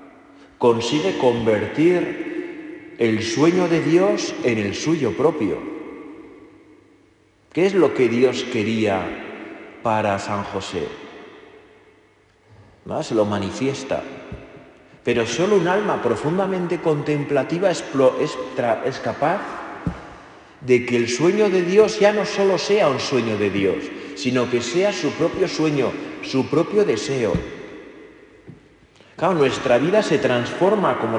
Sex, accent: male, Spanish